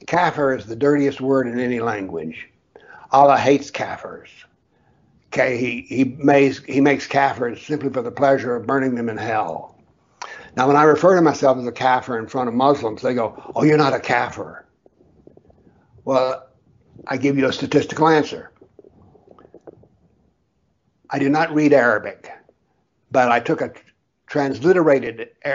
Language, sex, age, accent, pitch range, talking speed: English, male, 60-79, American, 125-145 Hz, 145 wpm